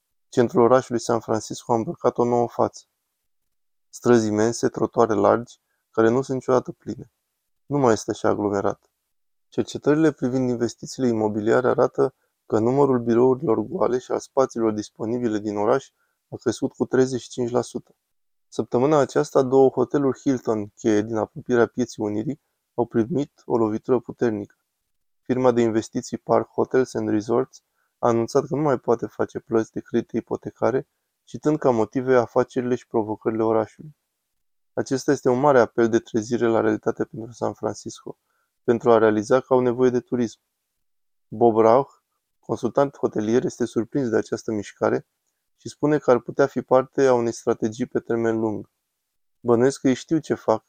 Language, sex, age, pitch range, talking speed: Romanian, male, 20-39, 115-130 Hz, 155 wpm